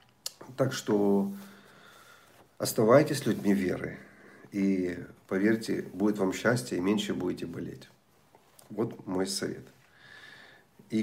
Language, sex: Russian, male